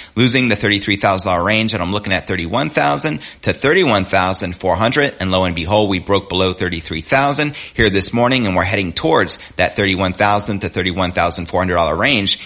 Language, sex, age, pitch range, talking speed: English, male, 30-49, 90-110 Hz, 215 wpm